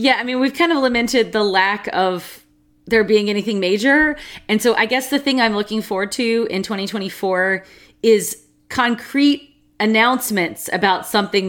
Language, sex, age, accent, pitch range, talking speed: English, female, 30-49, American, 170-220 Hz, 160 wpm